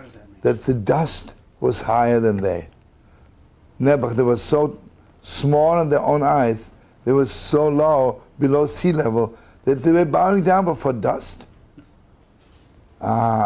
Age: 60-79